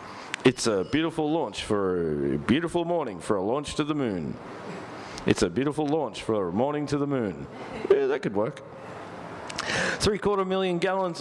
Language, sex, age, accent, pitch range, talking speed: English, male, 50-69, Australian, 110-145 Hz, 170 wpm